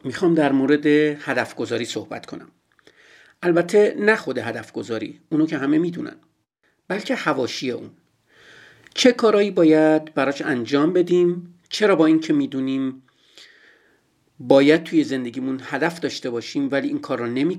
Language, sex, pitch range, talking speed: Persian, male, 140-190 Hz, 135 wpm